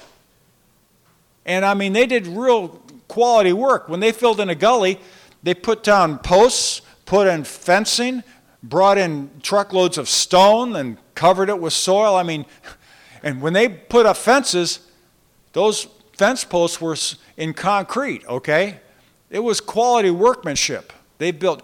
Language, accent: English, American